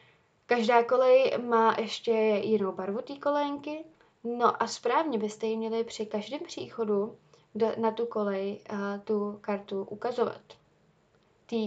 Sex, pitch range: female, 205-230 Hz